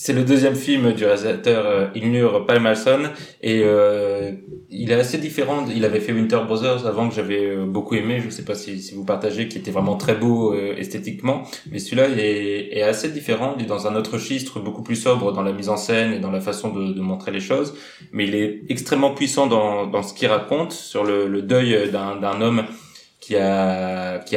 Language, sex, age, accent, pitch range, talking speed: French, male, 20-39, French, 100-120 Hz, 220 wpm